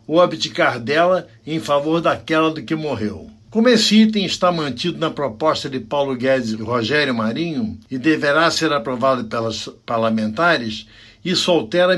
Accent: Brazilian